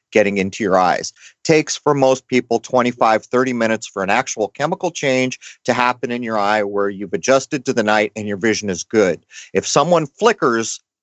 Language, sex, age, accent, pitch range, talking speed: English, male, 40-59, American, 110-140 Hz, 190 wpm